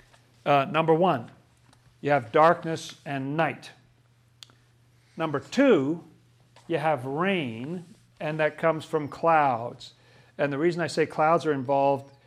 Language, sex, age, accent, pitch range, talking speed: English, male, 50-69, American, 125-150 Hz, 125 wpm